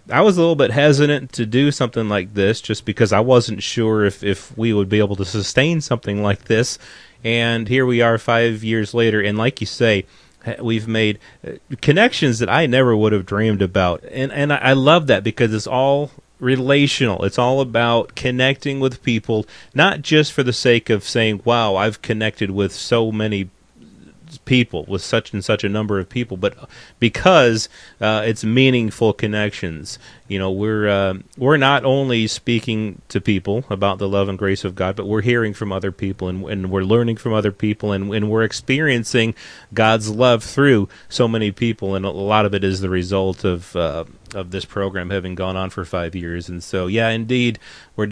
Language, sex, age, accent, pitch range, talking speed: English, male, 30-49, American, 100-125 Hz, 195 wpm